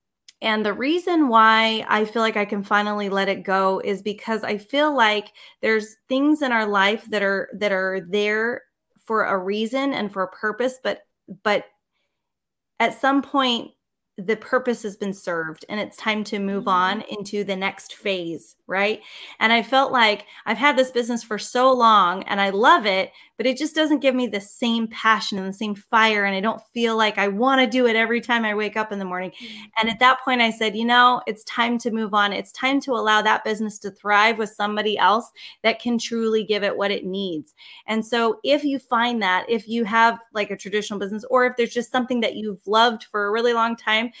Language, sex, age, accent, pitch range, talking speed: English, female, 20-39, American, 205-240 Hz, 215 wpm